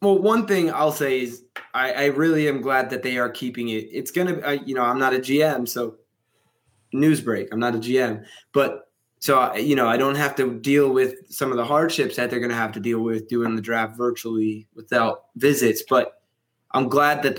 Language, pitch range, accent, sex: English, 120-145 Hz, American, male